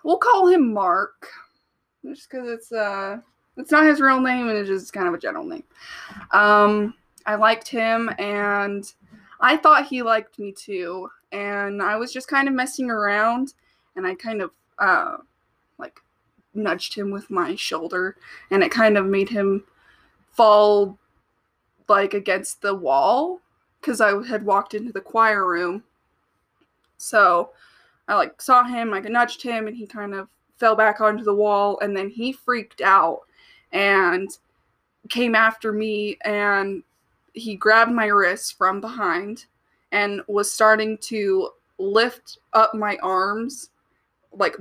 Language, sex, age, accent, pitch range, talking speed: English, female, 20-39, American, 200-245 Hz, 150 wpm